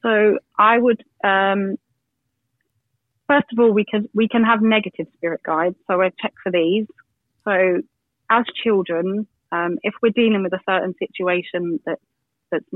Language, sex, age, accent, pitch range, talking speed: English, female, 30-49, British, 170-200 Hz, 155 wpm